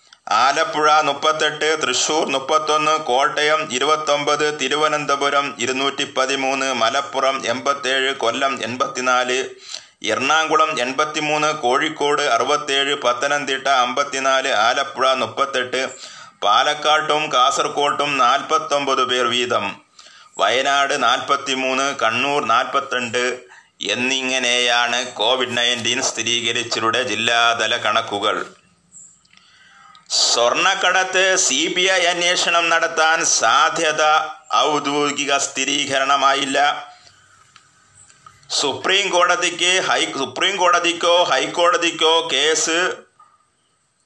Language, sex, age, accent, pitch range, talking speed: Malayalam, male, 20-39, native, 130-160 Hz, 70 wpm